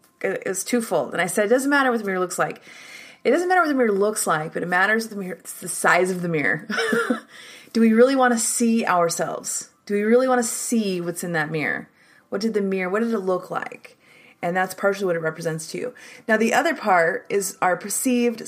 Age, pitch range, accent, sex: 30-49, 165-230 Hz, American, female